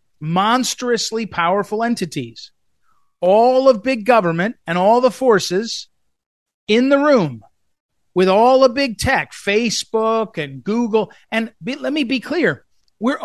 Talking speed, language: 125 wpm, English